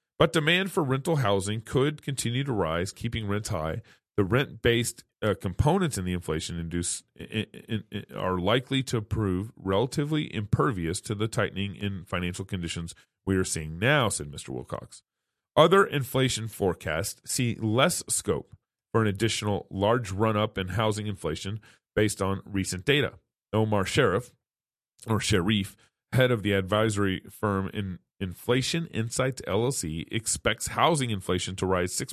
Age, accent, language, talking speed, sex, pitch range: 30-49, American, English, 150 wpm, male, 90-115 Hz